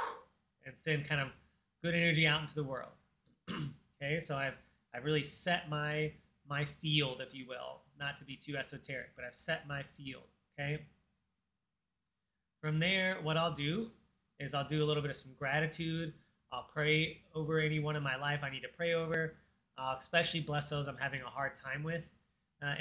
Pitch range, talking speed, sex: 140-165 Hz, 185 wpm, male